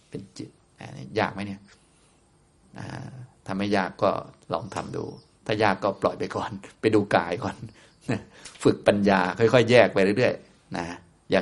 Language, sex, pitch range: Thai, male, 95-120 Hz